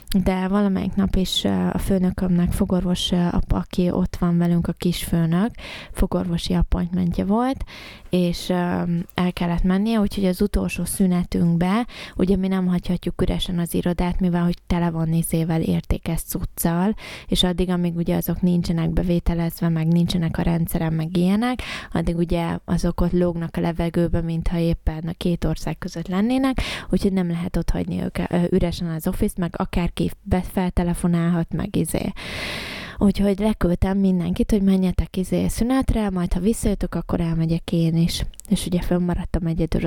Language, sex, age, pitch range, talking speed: Hungarian, female, 20-39, 170-190 Hz, 150 wpm